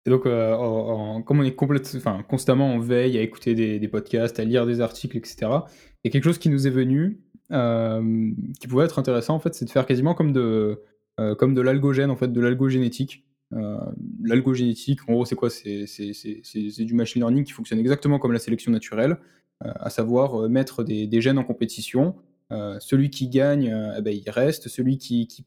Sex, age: male, 20-39